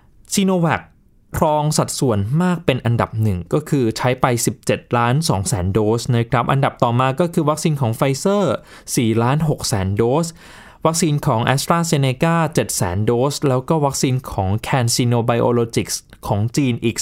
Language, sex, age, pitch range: Thai, male, 20-39, 120-160 Hz